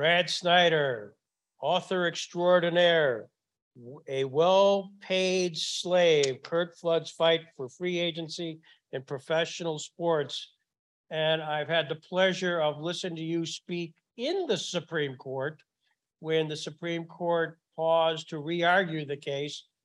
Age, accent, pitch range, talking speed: 60-79, American, 150-170 Hz, 120 wpm